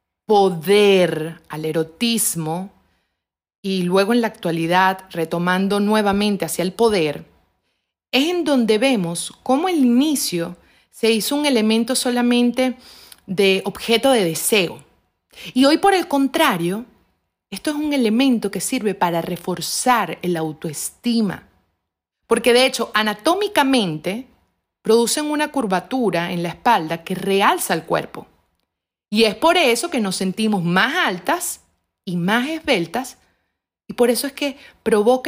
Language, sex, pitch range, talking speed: Spanish, female, 175-250 Hz, 130 wpm